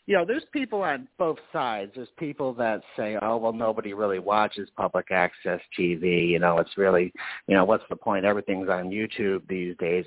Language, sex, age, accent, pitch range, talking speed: English, male, 50-69, American, 105-160 Hz, 195 wpm